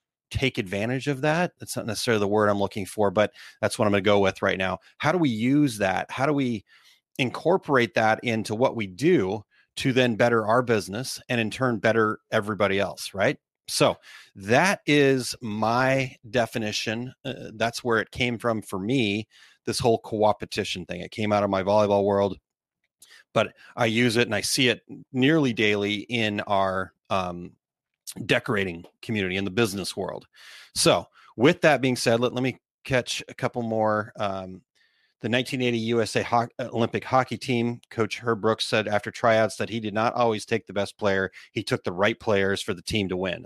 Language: English